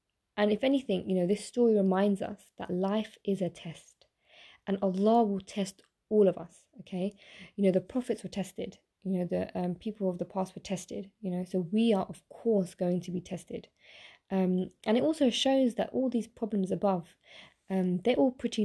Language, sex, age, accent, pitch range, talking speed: English, female, 20-39, British, 185-215 Hz, 205 wpm